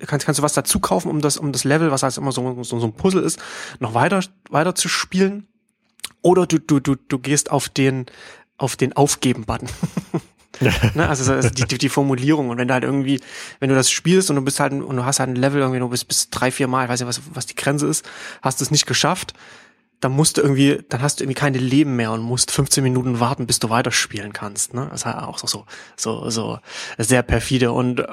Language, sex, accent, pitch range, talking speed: German, male, German, 125-150 Hz, 240 wpm